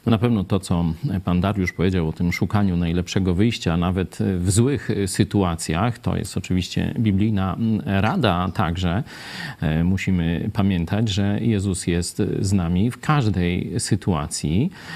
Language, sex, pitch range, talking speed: Polish, male, 95-120 Hz, 130 wpm